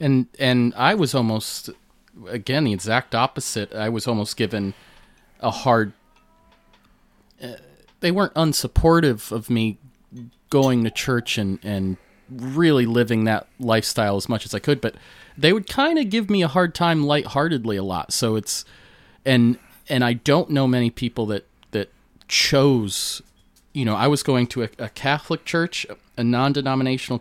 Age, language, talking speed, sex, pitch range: 30-49, English, 160 wpm, male, 110-140 Hz